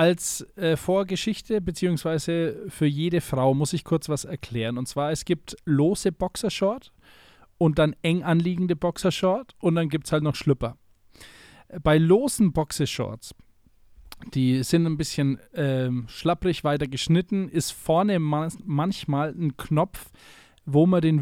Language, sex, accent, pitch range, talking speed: German, male, German, 130-170 Hz, 140 wpm